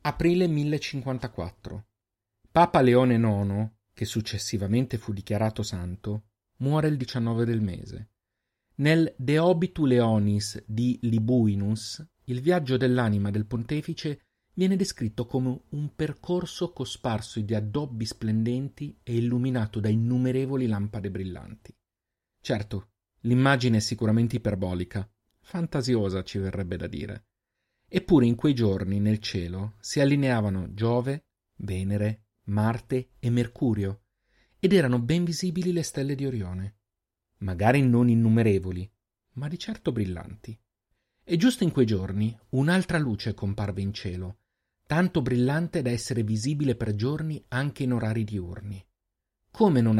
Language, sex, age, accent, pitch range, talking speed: Italian, male, 40-59, native, 105-130 Hz, 120 wpm